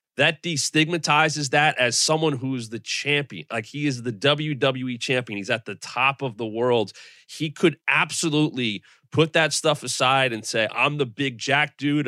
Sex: male